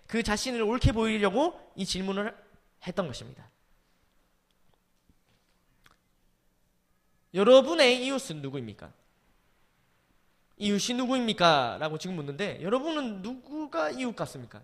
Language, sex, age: Korean, male, 20-39